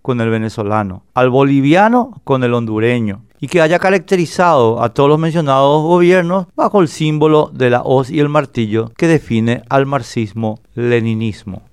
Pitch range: 120-160 Hz